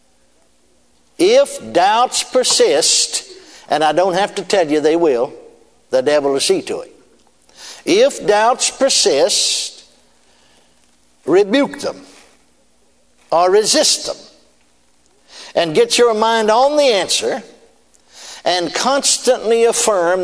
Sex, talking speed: male, 105 wpm